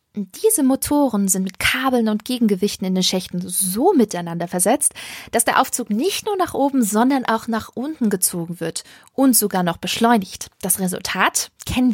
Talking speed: 165 wpm